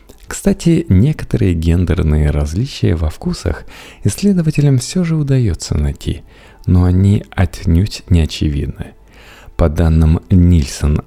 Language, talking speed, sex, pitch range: Russian, 105 wpm, male, 80-125 Hz